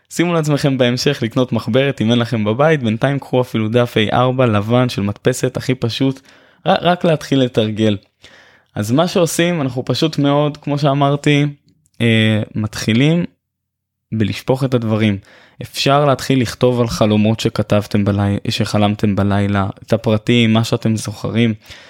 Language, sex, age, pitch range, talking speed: Hebrew, male, 20-39, 110-135 Hz, 135 wpm